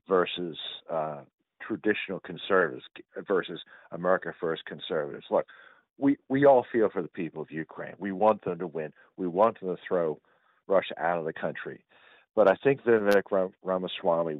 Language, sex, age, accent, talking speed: English, male, 50-69, American, 165 wpm